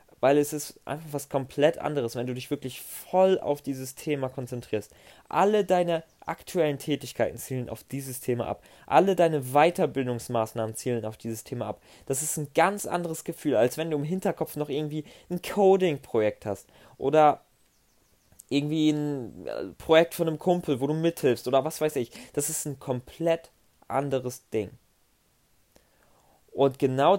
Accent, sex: German, male